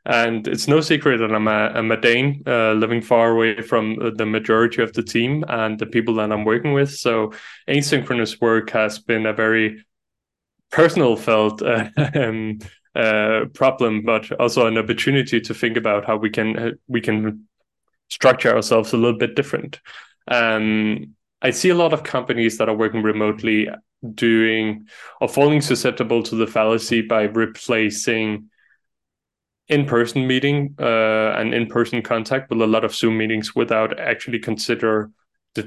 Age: 20-39